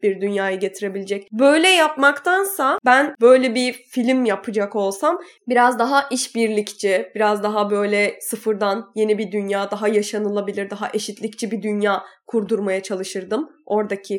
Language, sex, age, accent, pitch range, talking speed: Turkish, female, 10-29, native, 200-240 Hz, 125 wpm